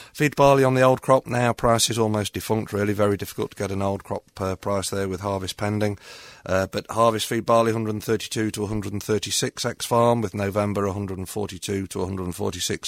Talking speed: 185 wpm